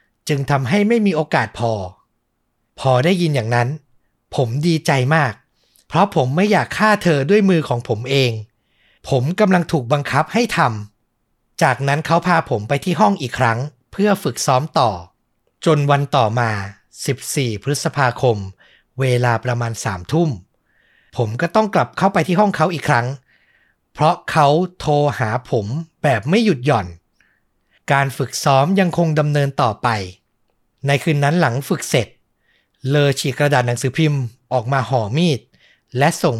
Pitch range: 120-160 Hz